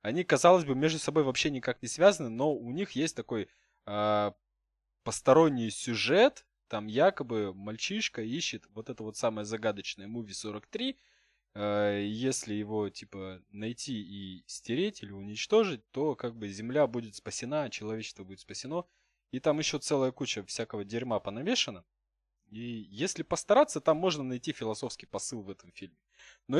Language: Russian